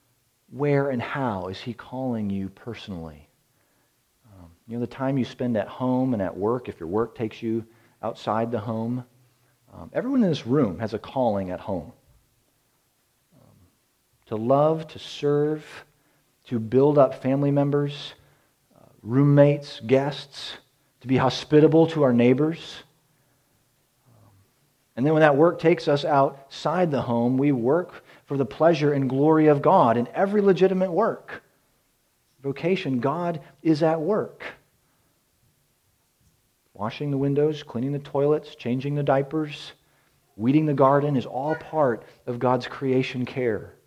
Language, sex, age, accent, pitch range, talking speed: English, male, 40-59, American, 120-150 Hz, 145 wpm